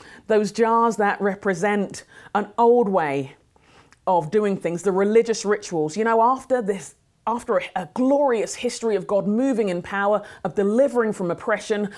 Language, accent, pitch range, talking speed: English, British, 155-215 Hz, 150 wpm